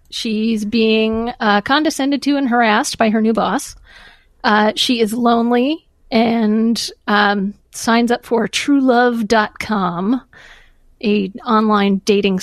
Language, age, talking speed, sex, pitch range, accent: English, 40-59, 115 wpm, female, 200-240 Hz, American